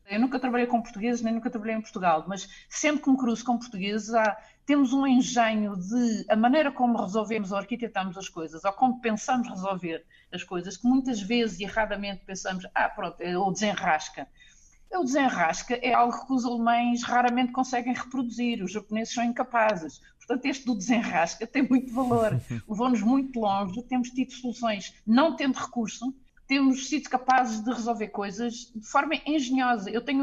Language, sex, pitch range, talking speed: Portuguese, female, 195-250 Hz, 175 wpm